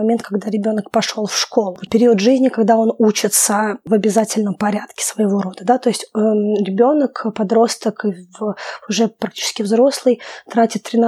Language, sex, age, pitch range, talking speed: Russian, female, 20-39, 215-240 Hz, 135 wpm